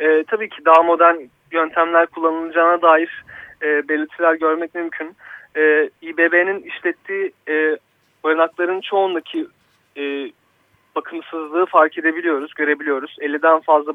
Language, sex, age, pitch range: Turkish, male, 30-49, 150-170 Hz